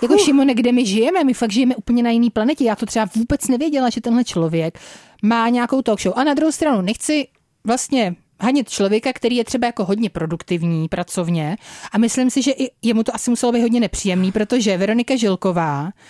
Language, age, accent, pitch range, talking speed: Czech, 30-49, native, 210-245 Hz, 200 wpm